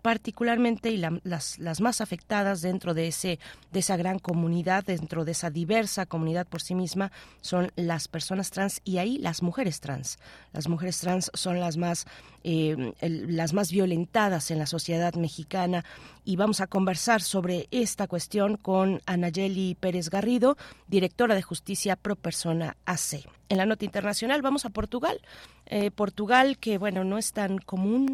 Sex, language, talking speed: female, Spanish, 155 wpm